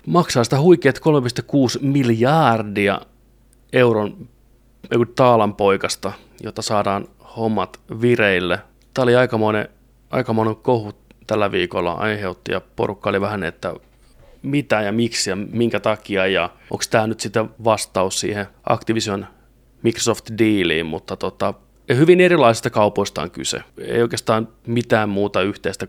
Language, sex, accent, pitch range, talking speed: Finnish, male, native, 105-120 Hz, 120 wpm